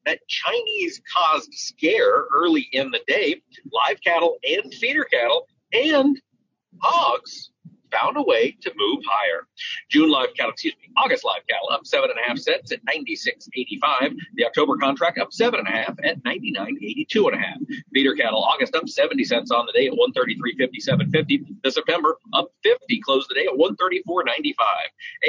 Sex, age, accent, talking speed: male, 40-59, American, 160 wpm